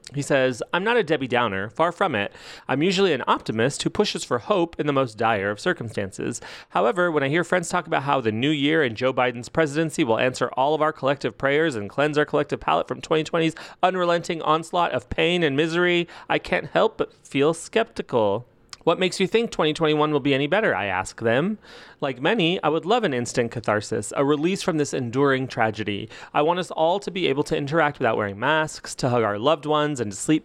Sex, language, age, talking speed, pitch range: male, English, 30-49, 220 wpm, 120-165 Hz